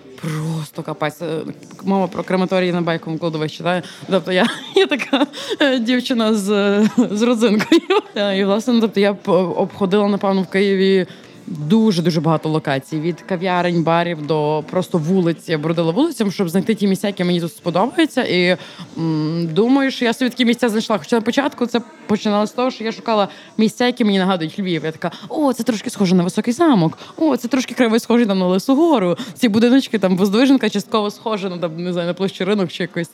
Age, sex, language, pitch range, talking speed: 20-39, female, Ukrainian, 175-225 Hz, 180 wpm